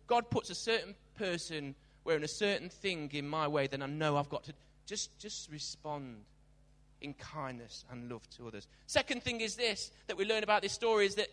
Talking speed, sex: 205 wpm, male